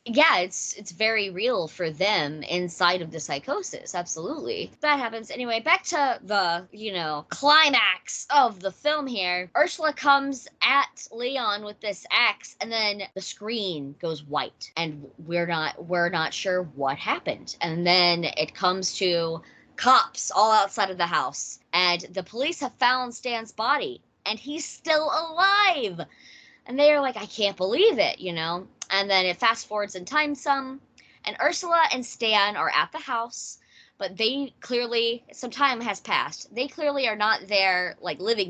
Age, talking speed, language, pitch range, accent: 20-39, 165 wpm, English, 180-275 Hz, American